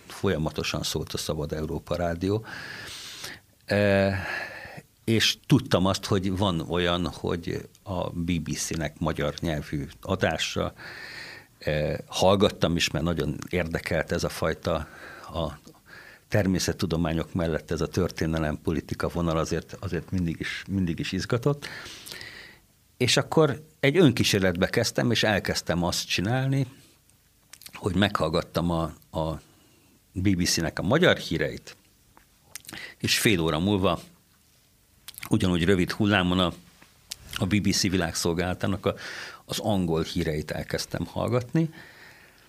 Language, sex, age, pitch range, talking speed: Hungarian, male, 60-79, 85-110 Hz, 105 wpm